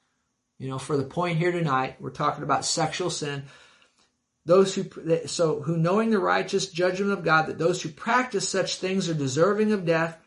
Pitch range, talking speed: 150-195 Hz, 185 wpm